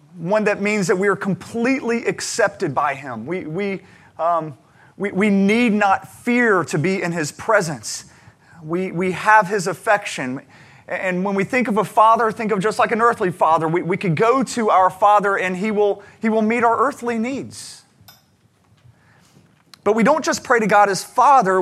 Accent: American